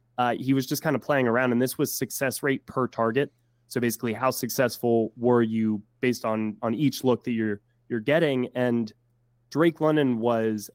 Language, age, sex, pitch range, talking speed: English, 20-39, male, 110-125 Hz, 190 wpm